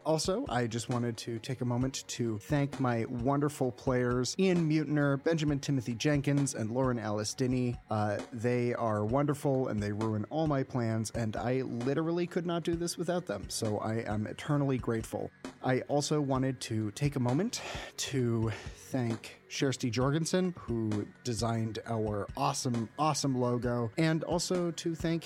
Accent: American